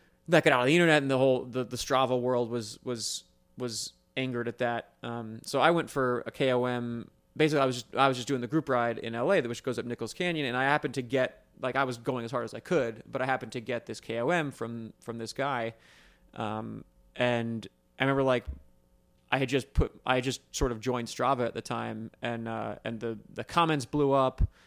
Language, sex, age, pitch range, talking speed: English, male, 20-39, 120-140 Hz, 235 wpm